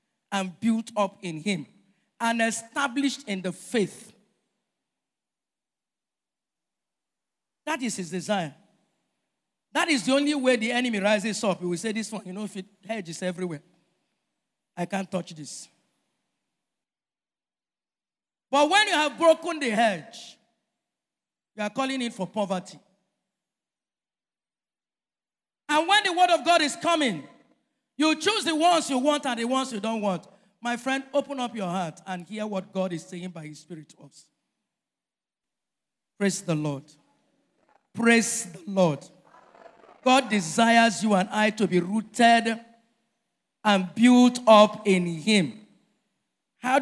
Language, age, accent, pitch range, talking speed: English, 50-69, Nigerian, 185-235 Hz, 140 wpm